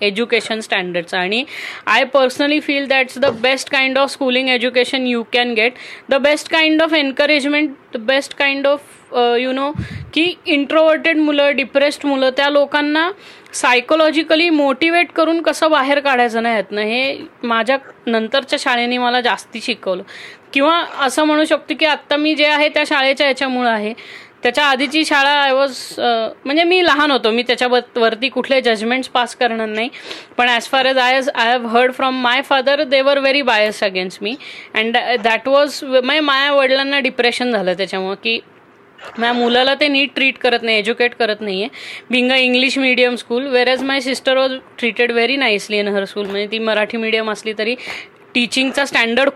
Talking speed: 170 wpm